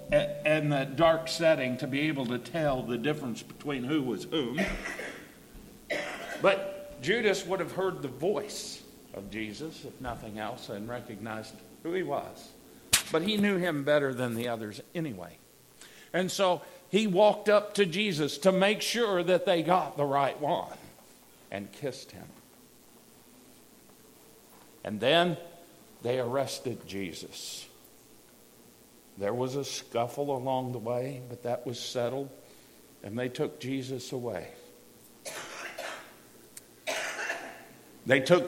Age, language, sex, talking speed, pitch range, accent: 50-69, English, male, 130 wpm, 125-170 Hz, American